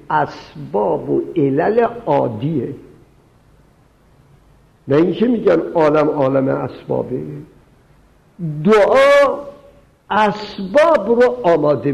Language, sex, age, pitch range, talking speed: Persian, male, 60-79, 140-235 Hz, 70 wpm